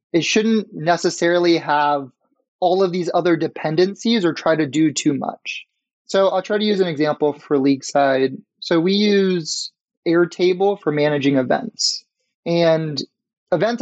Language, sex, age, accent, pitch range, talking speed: English, male, 20-39, American, 150-185 Hz, 150 wpm